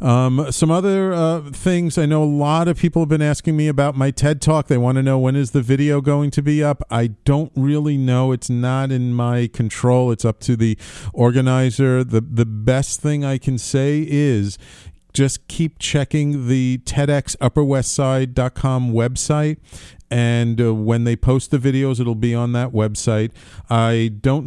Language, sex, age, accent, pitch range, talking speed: English, male, 40-59, American, 110-135 Hz, 180 wpm